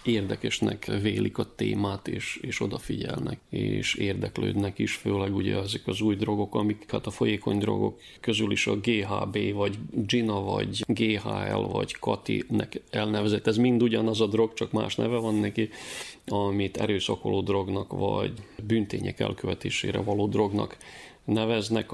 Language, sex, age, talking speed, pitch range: Hungarian, male, 30-49, 140 wpm, 100-115 Hz